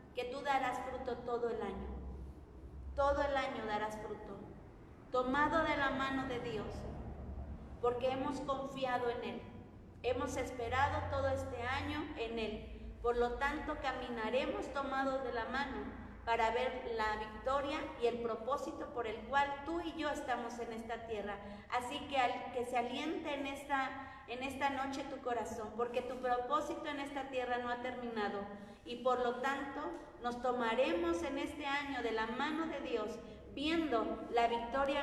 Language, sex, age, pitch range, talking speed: Spanish, female, 40-59, 230-275 Hz, 160 wpm